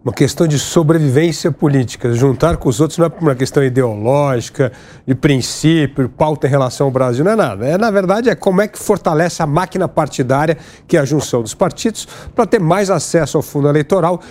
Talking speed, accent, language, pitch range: 195 wpm, Brazilian, Portuguese, 140-190 Hz